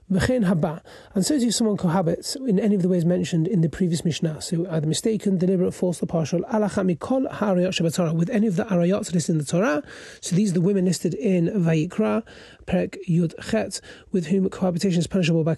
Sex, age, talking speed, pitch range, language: male, 30-49, 175 wpm, 170-200 Hz, English